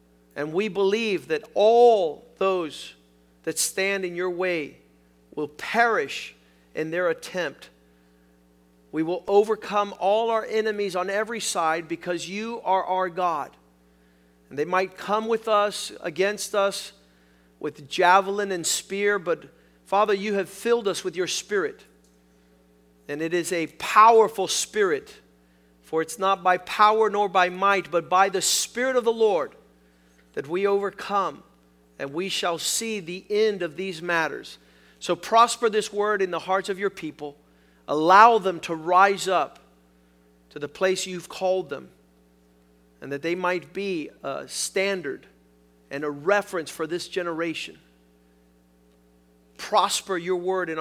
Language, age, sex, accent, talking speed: English, 50-69, male, American, 145 wpm